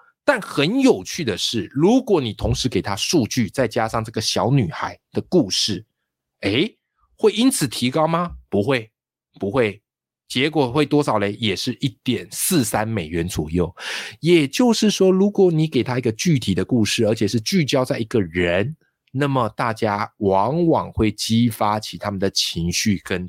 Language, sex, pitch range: Chinese, male, 95-135 Hz